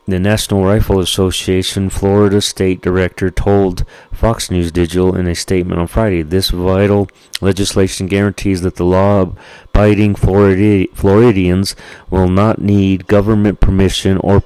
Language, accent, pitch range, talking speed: English, American, 90-100 Hz, 125 wpm